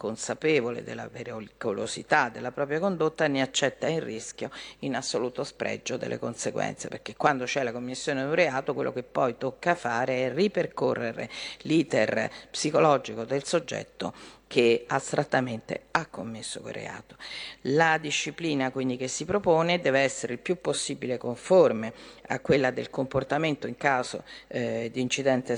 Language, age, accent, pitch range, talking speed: Italian, 50-69, native, 125-150 Hz, 145 wpm